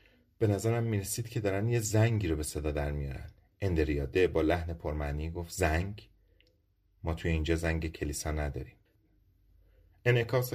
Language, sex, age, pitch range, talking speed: Persian, male, 30-49, 85-110 Hz, 140 wpm